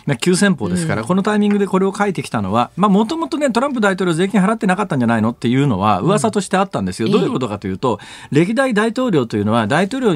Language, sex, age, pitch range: Japanese, male, 40-59, 130-215 Hz